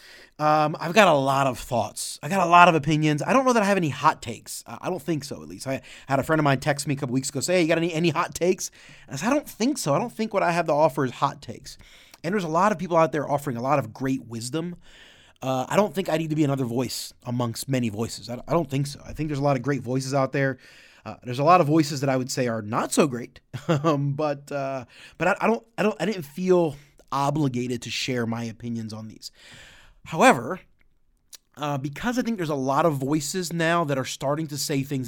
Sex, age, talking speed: male, 30-49, 270 wpm